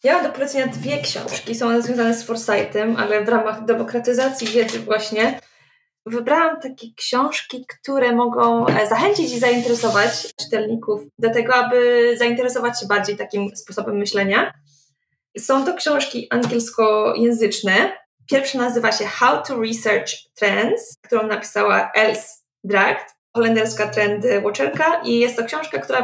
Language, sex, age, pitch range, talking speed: Polish, female, 20-39, 215-255 Hz, 130 wpm